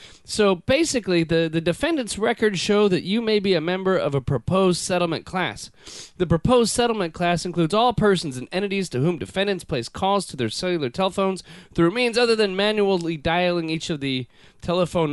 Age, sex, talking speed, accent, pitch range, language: 30-49, male, 185 wpm, American, 140-195 Hz, English